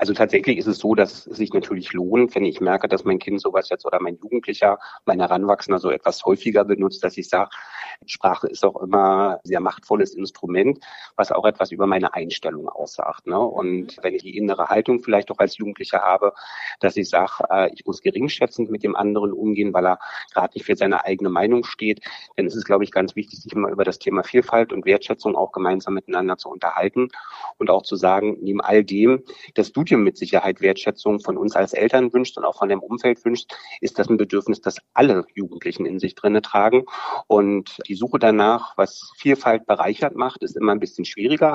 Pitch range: 95-110 Hz